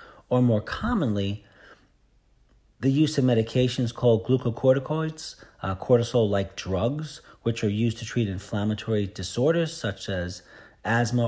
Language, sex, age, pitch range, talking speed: English, male, 40-59, 105-130 Hz, 115 wpm